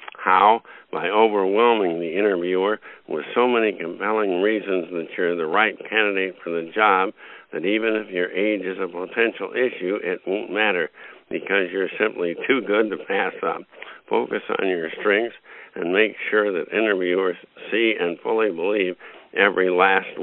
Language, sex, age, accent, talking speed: English, male, 60-79, American, 155 wpm